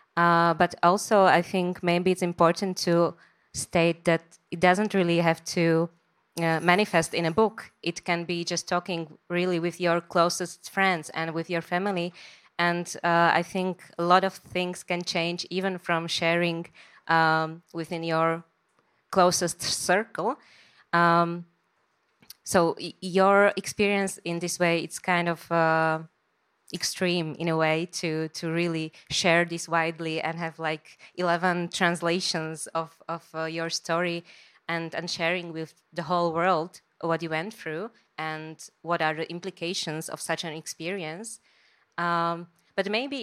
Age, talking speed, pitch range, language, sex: 20-39, 150 wpm, 165-180 Hz, Slovak, female